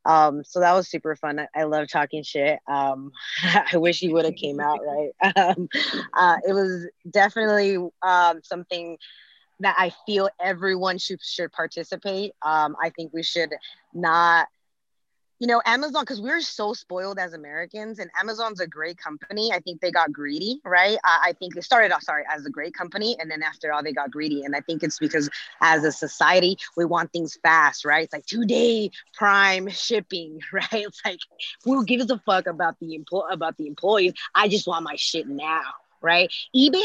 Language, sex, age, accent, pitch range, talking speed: English, female, 20-39, American, 155-210 Hz, 185 wpm